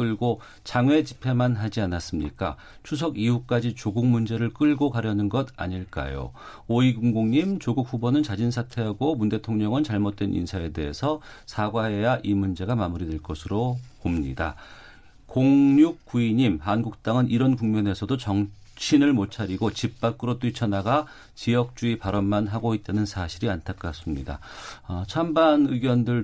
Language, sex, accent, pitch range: Korean, male, native, 100-135 Hz